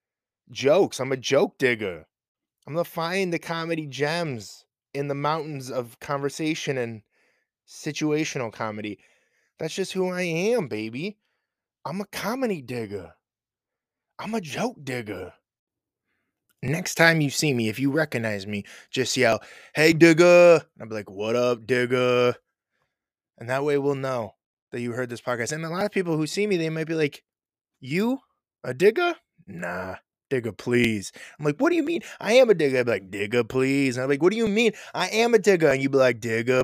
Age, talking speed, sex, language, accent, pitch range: 20-39, 185 wpm, male, English, American, 125-175 Hz